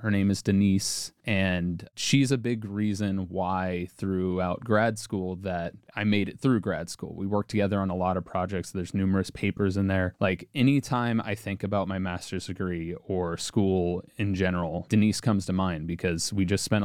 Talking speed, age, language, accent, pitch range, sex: 190 wpm, 20-39, English, American, 95-105 Hz, male